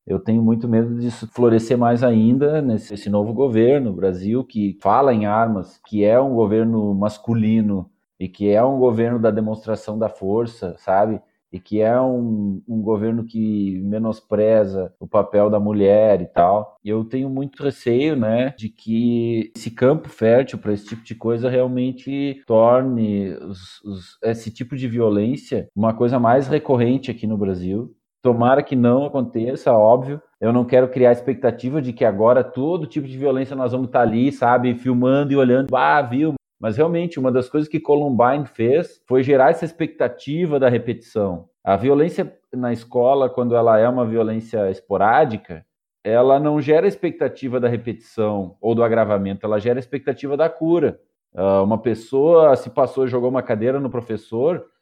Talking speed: 165 wpm